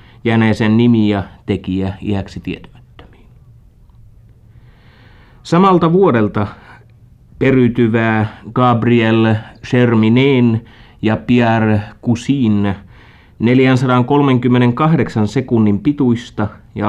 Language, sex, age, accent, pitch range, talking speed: Finnish, male, 30-49, native, 100-120 Hz, 65 wpm